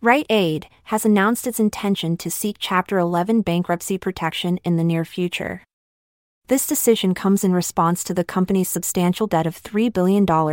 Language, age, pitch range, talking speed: English, 30-49, 170-205 Hz, 165 wpm